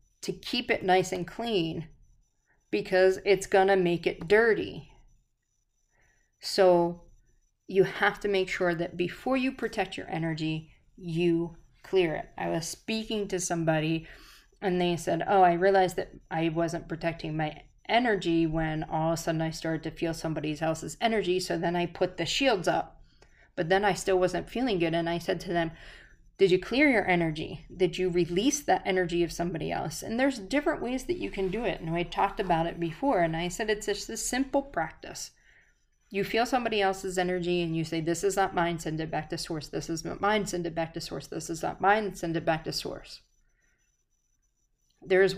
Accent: American